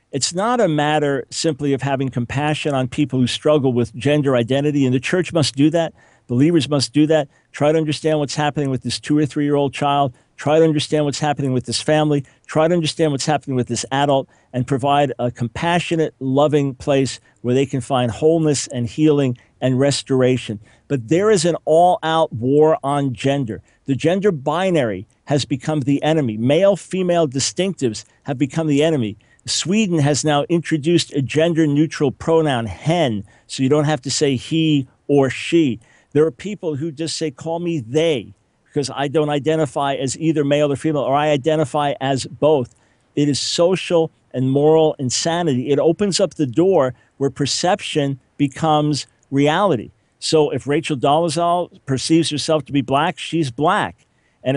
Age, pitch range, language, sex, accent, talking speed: 50-69, 135-160 Hz, English, male, American, 175 wpm